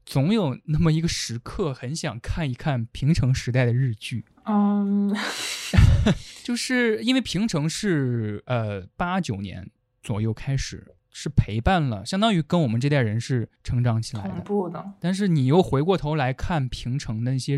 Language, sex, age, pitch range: Chinese, male, 20-39, 115-160 Hz